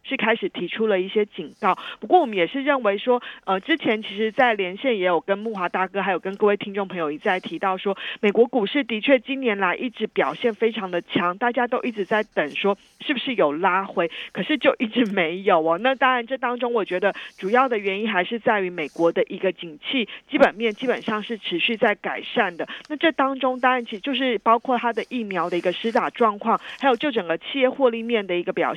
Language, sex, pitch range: Chinese, female, 190-255 Hz